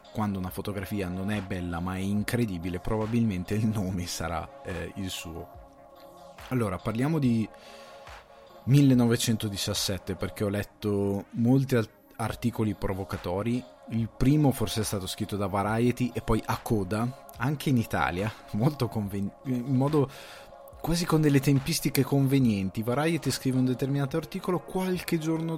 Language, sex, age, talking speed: Italian, male, 20-39, 135 wpm